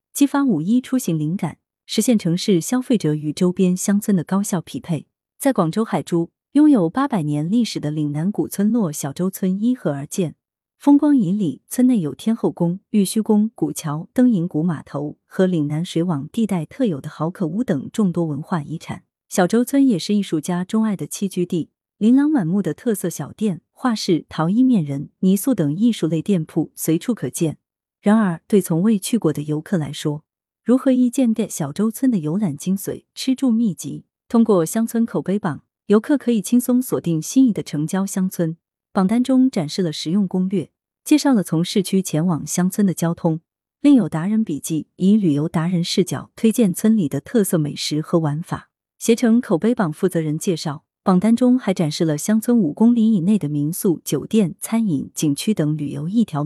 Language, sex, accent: Chinese, female, native